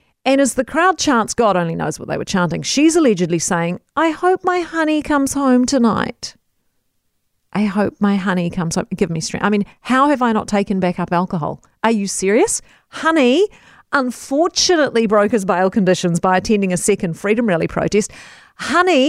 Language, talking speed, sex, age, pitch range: English, 180 wpm, female, 40-59, 195-300 Hz